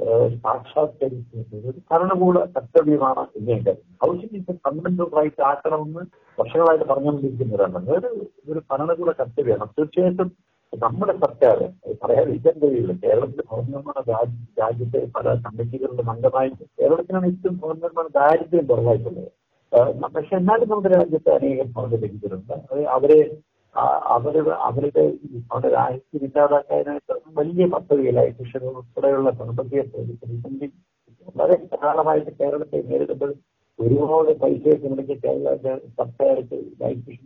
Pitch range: 130-180 Hz